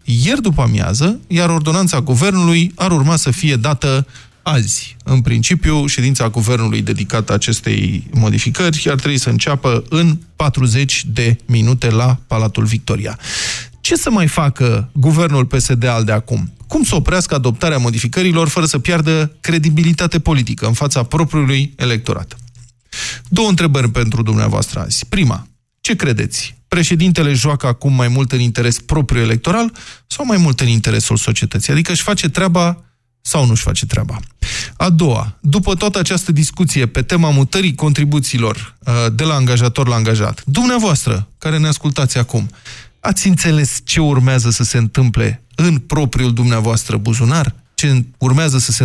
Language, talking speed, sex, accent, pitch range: Romanian, 145 wpm, male, native, 115-160 Hz